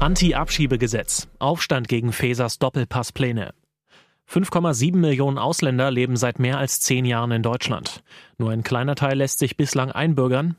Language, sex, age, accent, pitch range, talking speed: German, male, 30-49, German, 120-145 Hz, 130 wpm